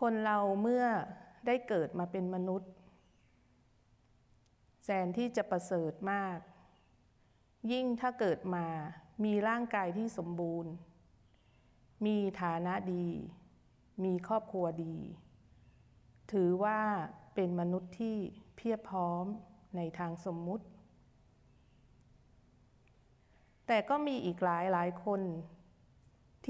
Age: 30-49